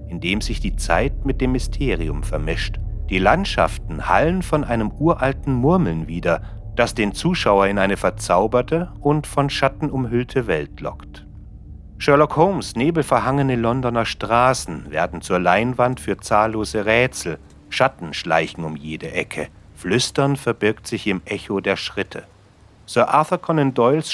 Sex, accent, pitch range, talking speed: male, German, 85-135 Hz, 135 wpm